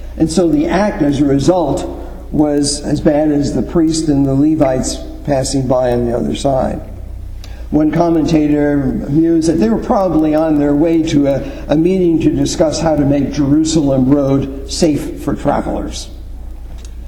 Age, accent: 50-69, American